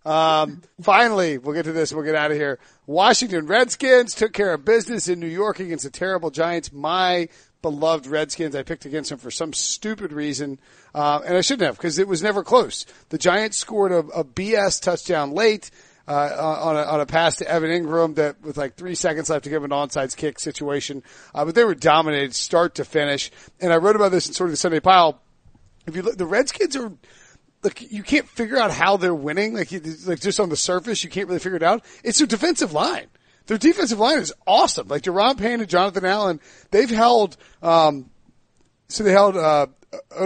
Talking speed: 215 wpm